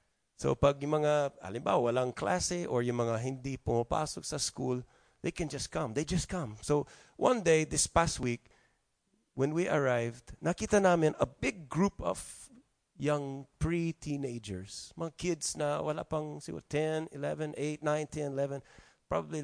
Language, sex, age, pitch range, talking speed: English, male, 30-49, 125-170 Hz, 155 wpm